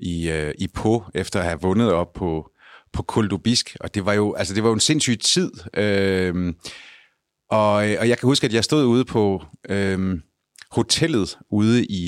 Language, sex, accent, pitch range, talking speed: Danish, male, native, 95-120 Hz, 185 wpm